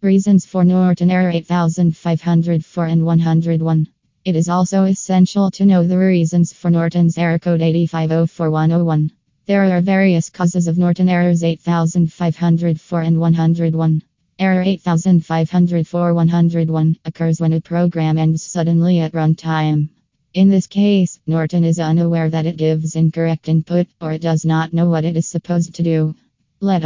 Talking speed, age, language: 140 wpm, 20-39, English